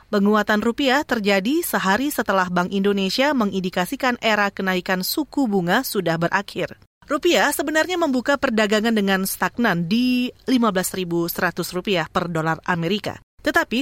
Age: 30-49